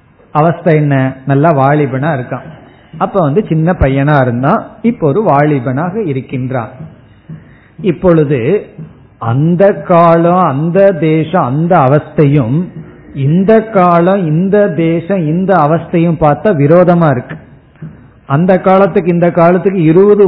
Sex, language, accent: male, Tamil, native